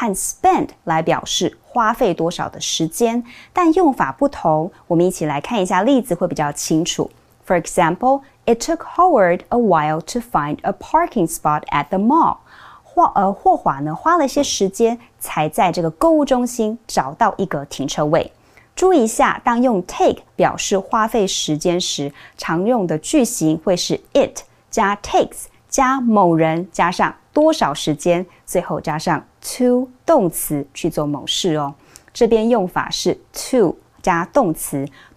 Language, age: Chinese, 30-49